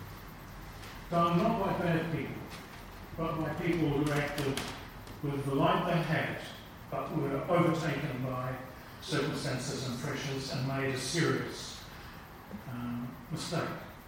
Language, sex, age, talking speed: English, male, 40-59, 115 wpm